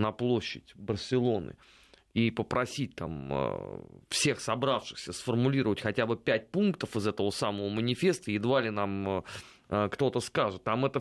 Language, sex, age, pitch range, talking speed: Russian, male, 30-49, 115-155 Hz, 130 wpm